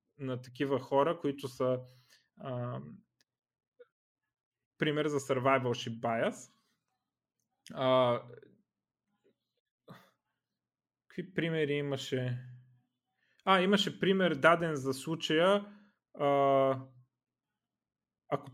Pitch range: 135-180 Hz